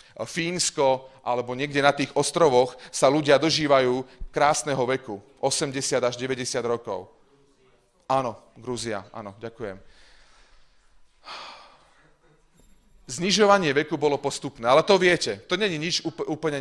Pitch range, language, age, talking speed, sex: 120-160 Hz, Slovak, 30-49, 110 wpm, male